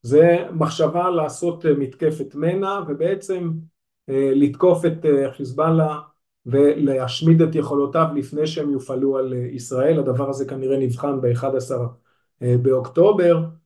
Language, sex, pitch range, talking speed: Hebrew, male, 135-165 Hz, 100 wpm